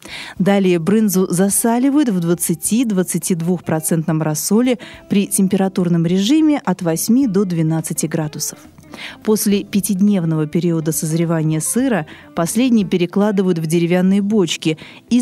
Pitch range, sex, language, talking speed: 170-220 Hz, female, Russian, 100 wpm